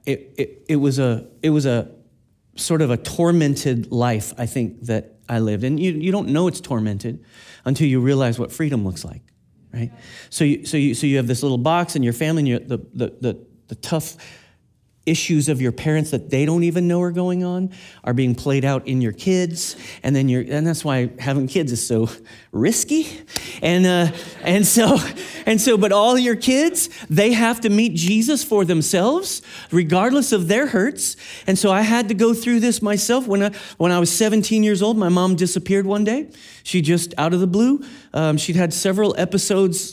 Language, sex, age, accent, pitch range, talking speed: English, male, 40-59, American, 130-185 Hz, 205 wpm